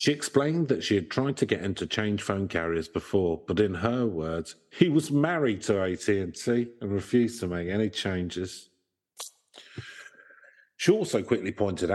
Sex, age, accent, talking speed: male, 50-69, British, 165 wpm